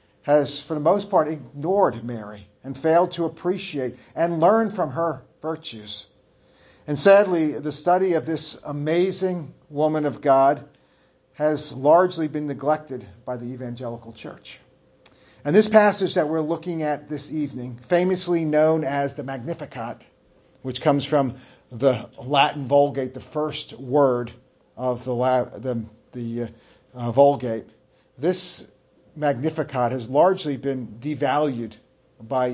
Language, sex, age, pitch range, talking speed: English, male, 40-59, 130-160 Hz, 130 wpm